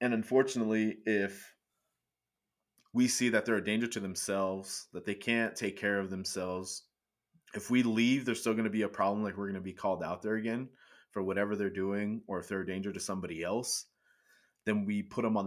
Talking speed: 210 wpm